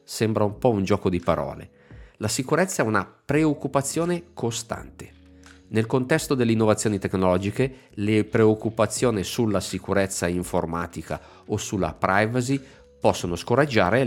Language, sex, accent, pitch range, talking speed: Italian, male, native, 90-125 Hz, 120 wpm